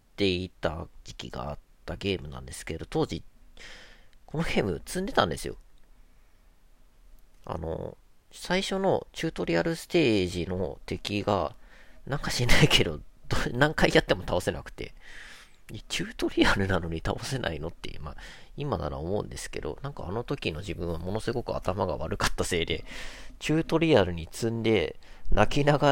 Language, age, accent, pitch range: Japanese, 40-59, native, 85-135 Hz